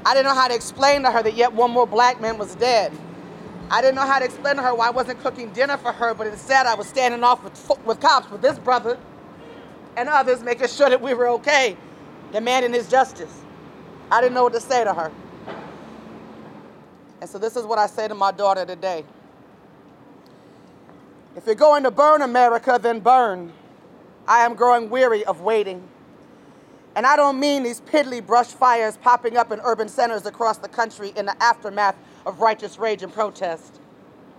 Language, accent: English, American